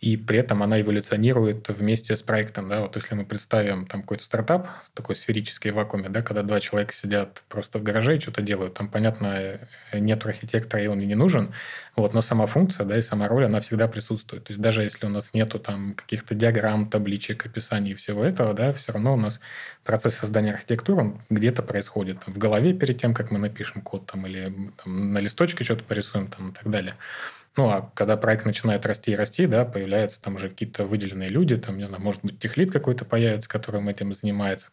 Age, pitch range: 20-39, 100-115 Hz